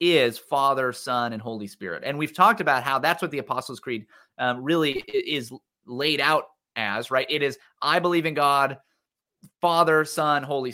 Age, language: 30-49, English